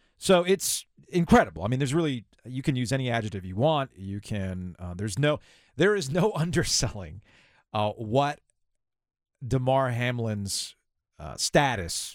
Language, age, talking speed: English, 40-59, 145 wpm